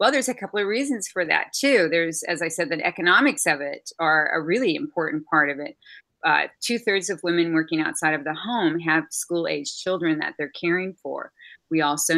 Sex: female